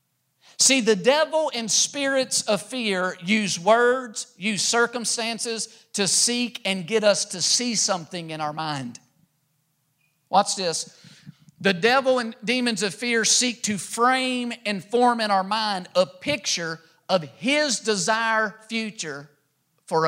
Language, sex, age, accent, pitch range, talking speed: English, male, 50-69, American, 170-225 Hz, 135 wpm